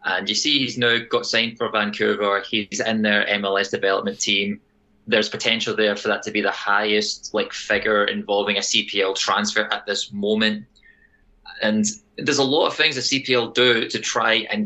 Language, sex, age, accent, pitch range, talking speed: English, male, 20-39, British, 105-120 Hz, 185 wpm